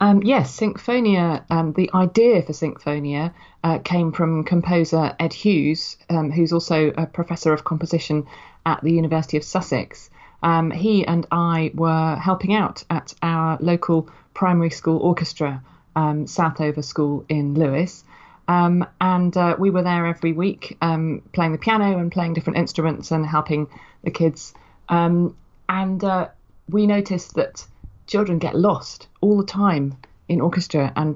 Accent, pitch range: British, 150-180 Hz